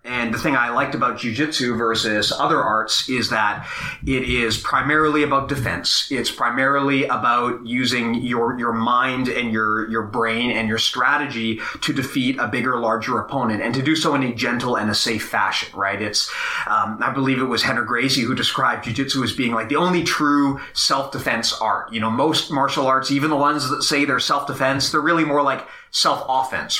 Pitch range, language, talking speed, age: 115-140 Hz, English, 195 wpm, 30-49